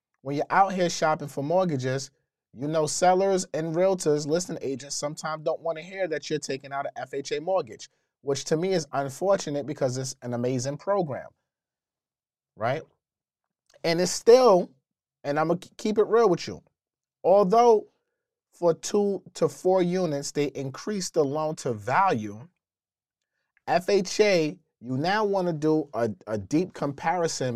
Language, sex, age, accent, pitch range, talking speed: English, male, 30-49, American, 135-180 Hz, 150 wpm